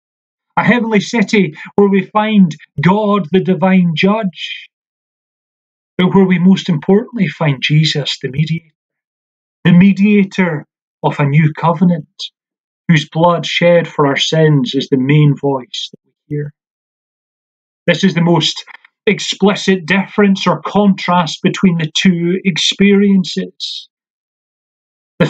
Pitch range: 150-195 Hz